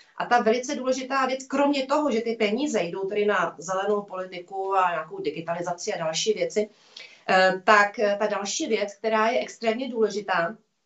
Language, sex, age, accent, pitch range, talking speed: Czech, female, 30-49, native, 200-245 Hz, 160 wpm